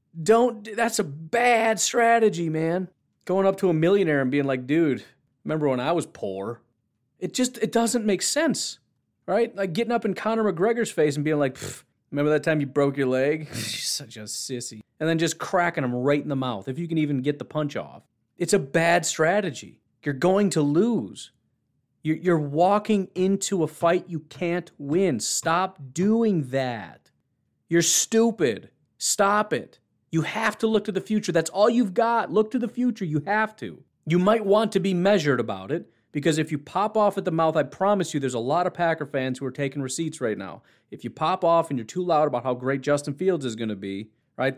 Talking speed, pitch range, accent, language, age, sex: 210 wpm, 140-200 Hz, American, English, 30-49, male